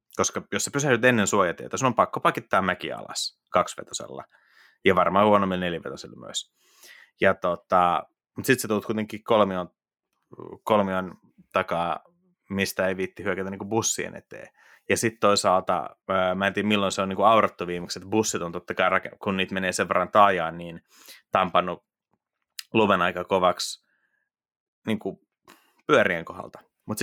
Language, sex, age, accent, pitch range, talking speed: Finnish, male, 30-49, native, 90-105 Hz, 145 wpm